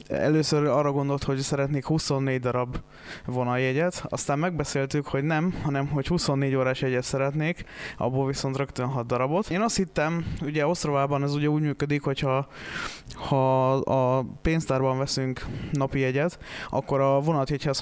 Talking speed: 135 wpm